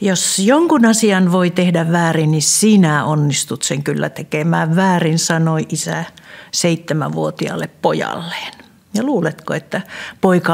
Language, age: Finnish, 60-79